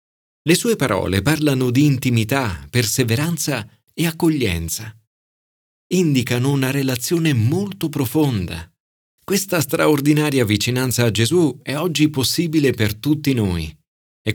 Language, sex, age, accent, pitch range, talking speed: Italian, male, 50-69, native, 105-155 Hz, 110 wpm